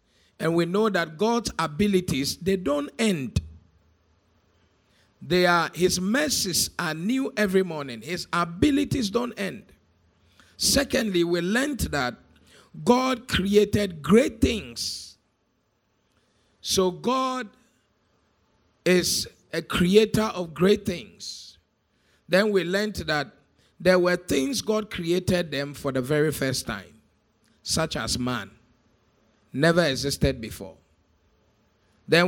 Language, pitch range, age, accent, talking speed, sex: English, 125-195 Hz, 50-69, Nigerian, 110 wpm, male